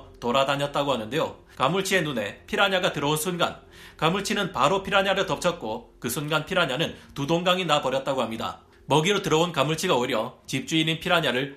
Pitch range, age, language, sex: 140-185 Hz, 40-59, Korean, male